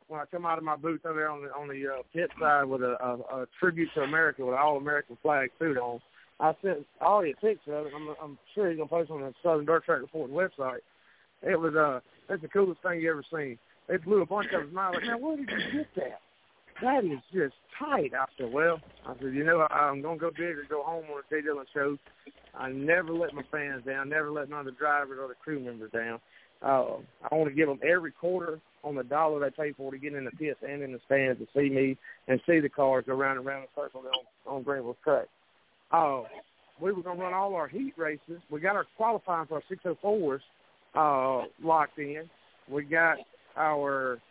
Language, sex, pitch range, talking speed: English, male, 140-170 Hz, 240 wpm